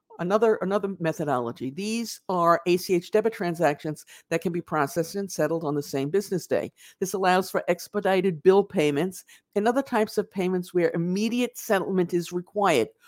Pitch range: 160-200 Hz